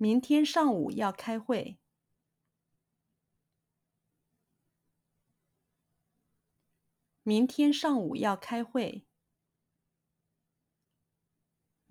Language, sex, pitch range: Chinese, female, 195-270 Hz